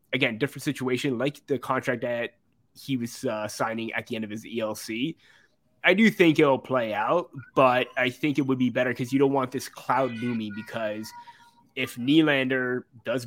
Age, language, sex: 20-39, English, male